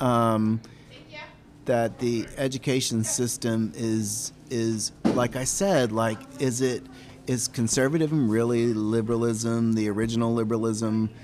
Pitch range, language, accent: 110-130 Hz, English, American